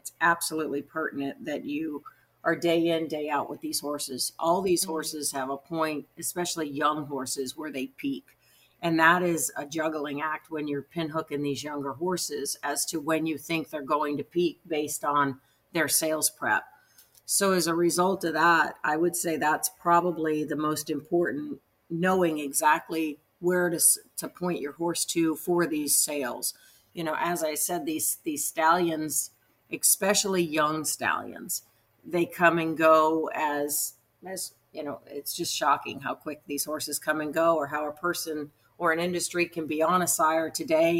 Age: 50-69